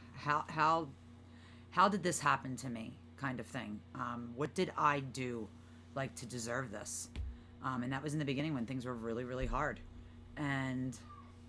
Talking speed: 180 wpm